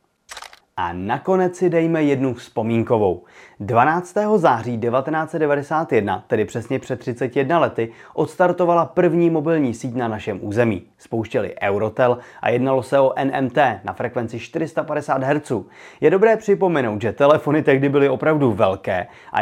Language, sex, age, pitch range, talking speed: Czech, male, 30-49, 120-160 Hz, 130 wpm